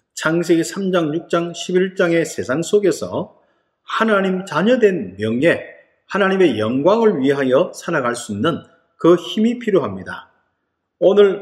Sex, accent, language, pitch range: male, native, Korean, 135-200 Hz